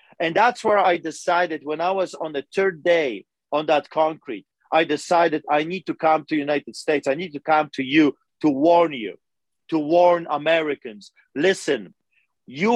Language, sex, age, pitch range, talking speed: English, male, 40-59, 150-180 Hz, 185 wpm